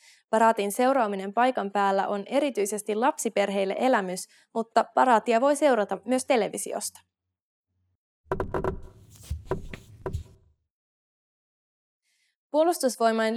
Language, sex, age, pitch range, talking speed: English, female, 20-39, 195-260 Hz, 65 wpm